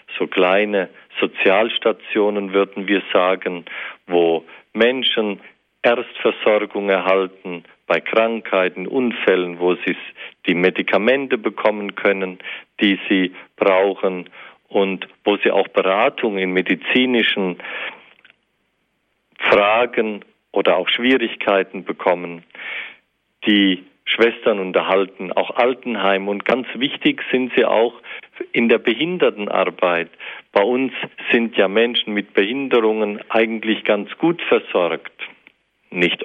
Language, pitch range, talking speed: German, 95-115 Hz, 100 wpm